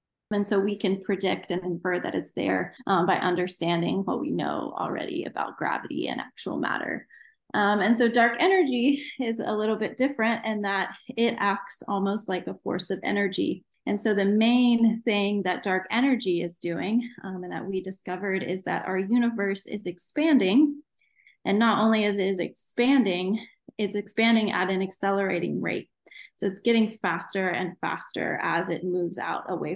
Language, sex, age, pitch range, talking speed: English, female, 20-39, 185-225 Hz, 175 wpm